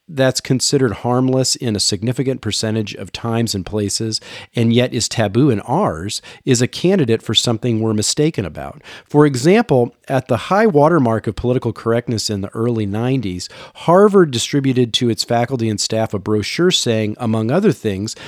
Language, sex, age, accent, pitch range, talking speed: English, male, 40-59, American, 110-140 Hz, 165 wpm